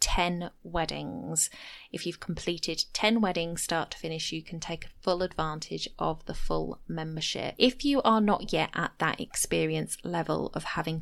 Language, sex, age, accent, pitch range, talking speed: English, female, 20-39, British, 160-200 Hz, 165 wpm